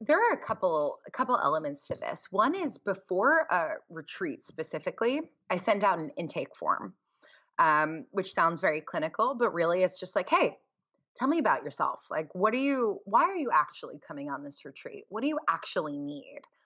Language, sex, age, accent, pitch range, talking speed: English, female, 20-39, American, 165-255 Hz, 190 wpm